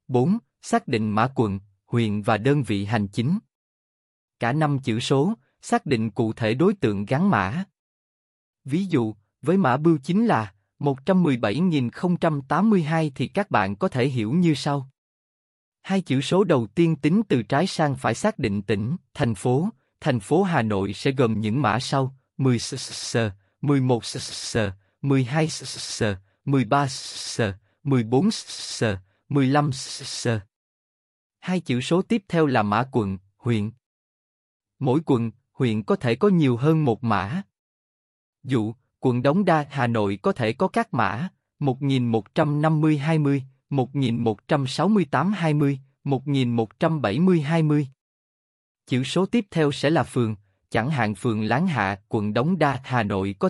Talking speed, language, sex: 140 wpm, Vietnamese, male